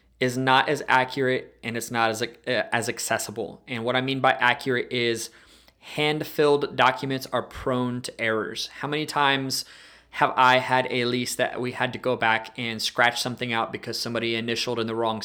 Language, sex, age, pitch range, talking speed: English, male, 20-39, 115-130 Hz, 185 wpm